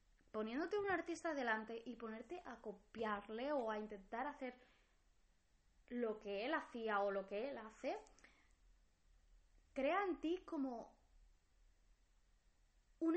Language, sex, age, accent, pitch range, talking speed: English, female, 20-39, Spanish, 215-280 Hz, 120 wpm